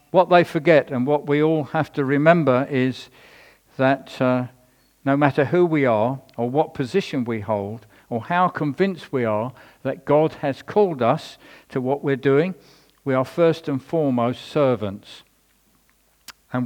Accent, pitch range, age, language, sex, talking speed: British, 125-155 Hz, 50-69, English, male, 160 wpm